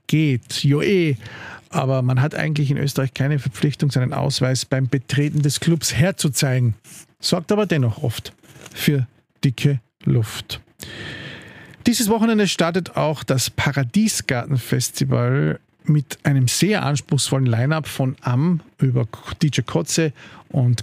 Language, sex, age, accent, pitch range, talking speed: German, male, 50-69, Austrian, 125-160 Hz, 120 wpm